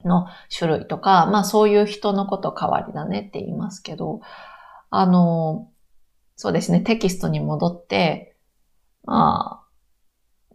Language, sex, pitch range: Japanese, female, 160-205 Hz